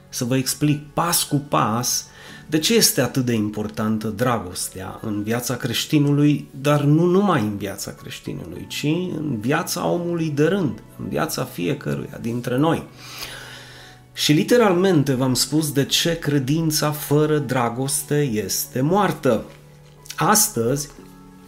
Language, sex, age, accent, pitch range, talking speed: Romanian, male, 30-49, native, 115-150 Hz, 125 wpm